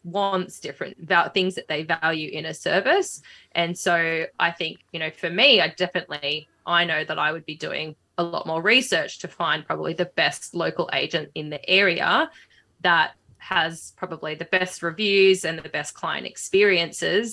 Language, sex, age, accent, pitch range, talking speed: English, female, 20-39, Australian, 160-185 Hz, 175 wpm